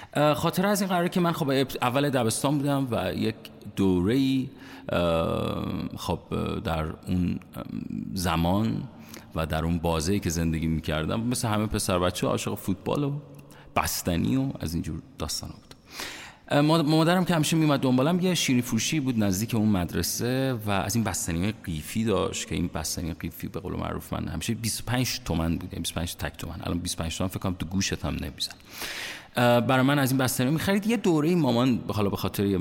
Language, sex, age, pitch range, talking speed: Persian, male, 40-59, 90-130 Hz, 175 wpm